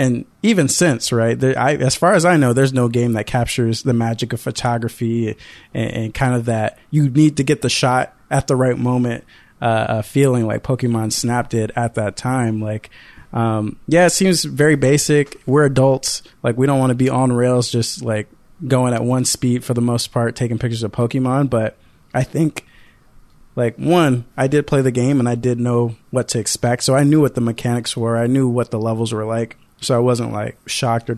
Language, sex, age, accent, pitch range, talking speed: English, male, 20-39, American, 115-135 Hz, 215 wpm